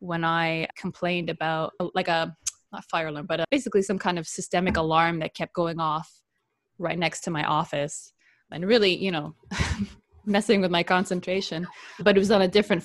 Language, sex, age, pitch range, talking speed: English, female, 20-39, 165-195 Hz, 175 wpm